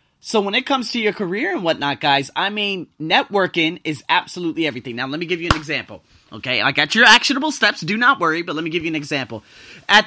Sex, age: male, 30-49